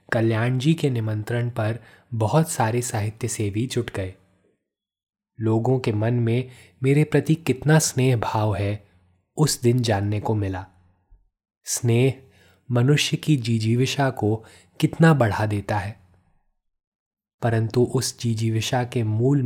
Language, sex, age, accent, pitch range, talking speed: Hindi, male, 20-39, native, 105-130 Hz, 130 wpm